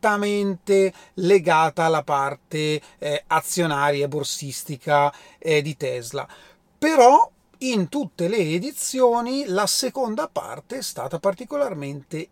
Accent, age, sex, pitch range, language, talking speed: native, 40-59, male, 160-215 Hz, Italian, 95 wpm